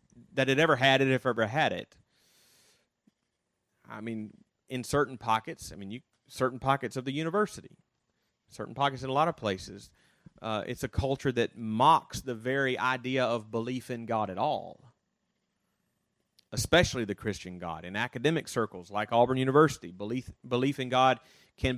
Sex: male